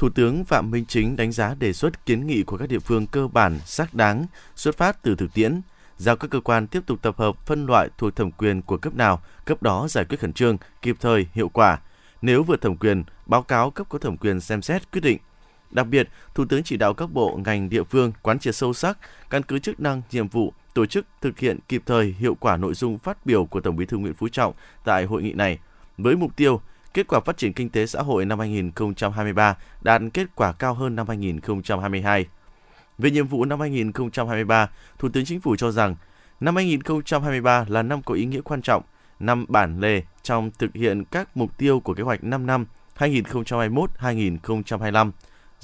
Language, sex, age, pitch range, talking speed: Vietnamese, male, 20-39, 105-130 Hz, 215 wpm